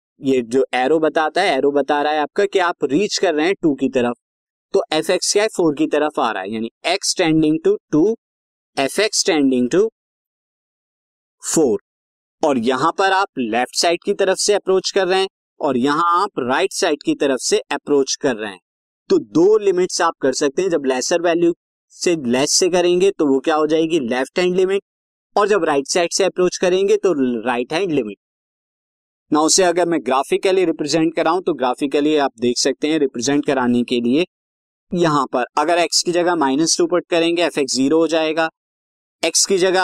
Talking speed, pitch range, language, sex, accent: 200 wpm, 130-180 Hz, Hindi, male, native